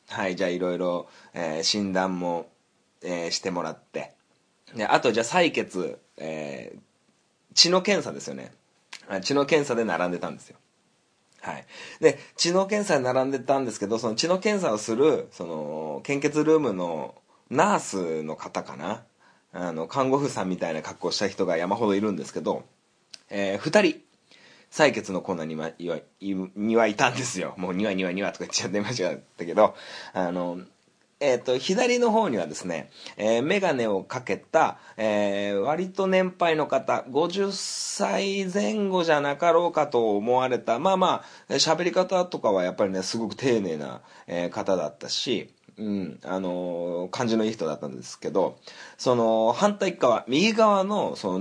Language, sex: Japanese, male